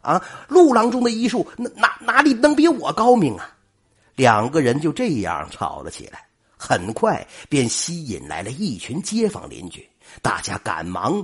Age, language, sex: 50-69, Chinese, male